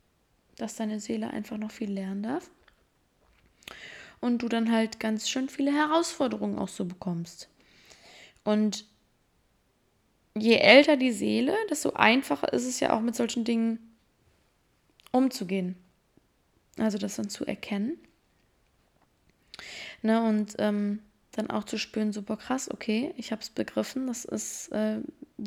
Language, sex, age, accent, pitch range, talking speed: German, female, 20-39, German, 200-230 Hz, 130 wpm